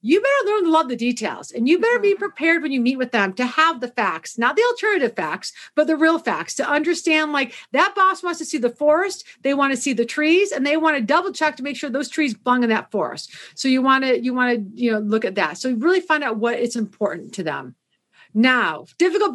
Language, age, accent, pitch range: English, 40-59, American, 215-300 Hz